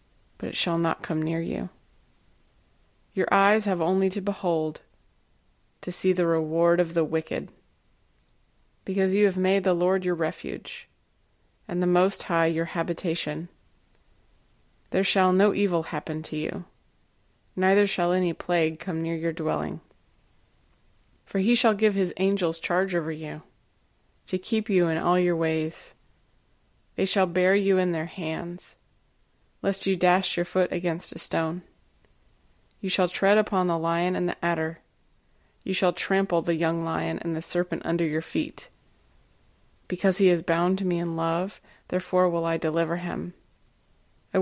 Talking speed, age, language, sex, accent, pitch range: 155 wpm, 20-39, English, female, American, 160-185 Hz